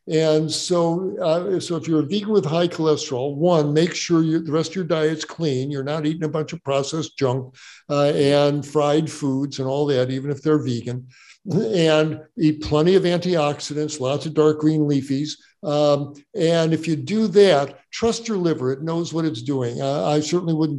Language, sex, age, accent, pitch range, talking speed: English, male, 60-79, American, 145-170 Hz, 195 wpm